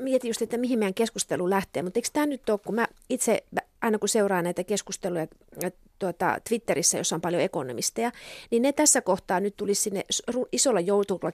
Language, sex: Finnish, female